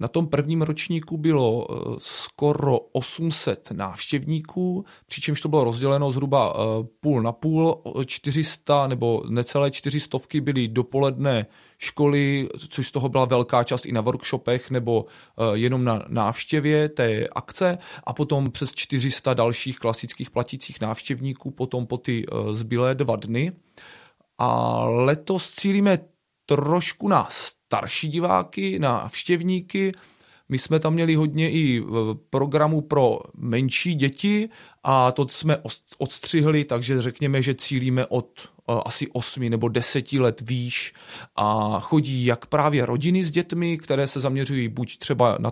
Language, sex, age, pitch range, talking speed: Czech, male, 30-49, 125-150 Hz, 130 wpm